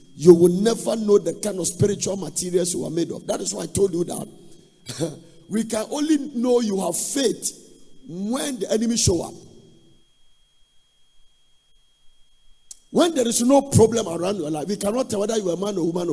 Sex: male